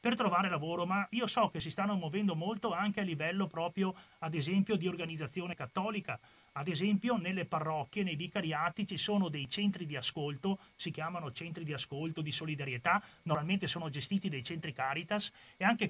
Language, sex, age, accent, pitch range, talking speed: Italian, male, 30-49, native, 155-200 Hz, 175 wpm